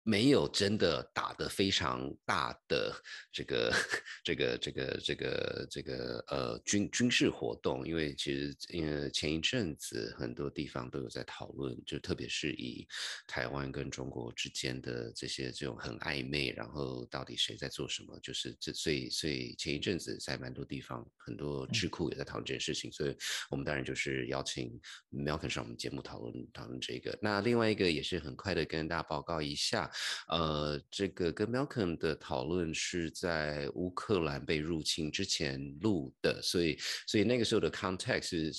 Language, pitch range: Chinese, 65-85 Hz